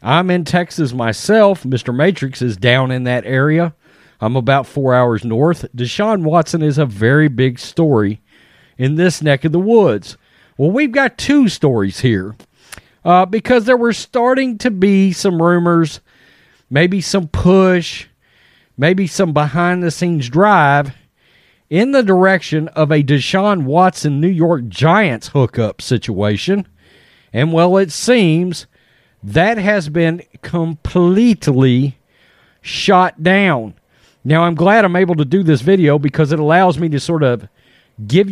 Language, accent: English, American